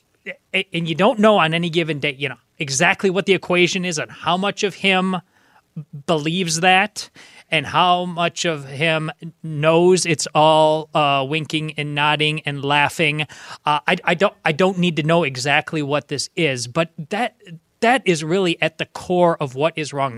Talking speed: 180 wpm